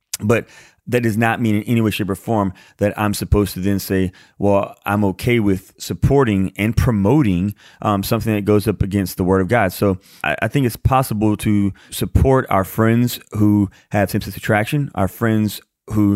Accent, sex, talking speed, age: American, male, 195 wpm, 30-49